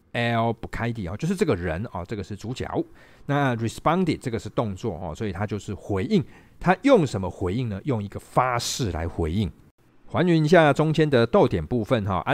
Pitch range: 95-140 Hz